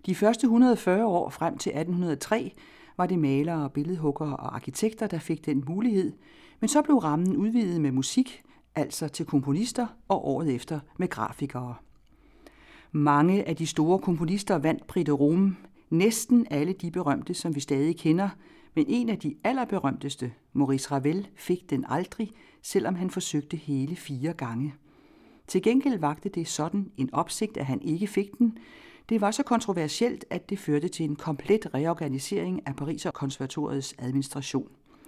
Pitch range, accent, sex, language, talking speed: 145-215 Hz, native, female, Danish, 150 wpm